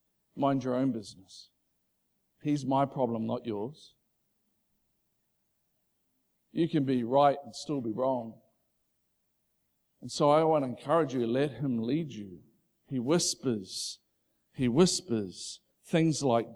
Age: 50-69